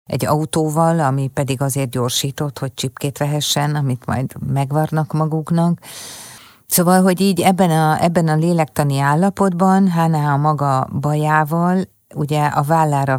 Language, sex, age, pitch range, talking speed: Hungarian, female, 50-69, 130-155 Hz, 130 wpm